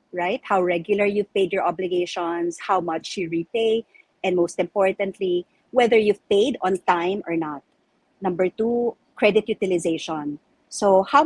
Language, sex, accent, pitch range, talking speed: English, female, Filipino, 180-220 Hz, 145 wpm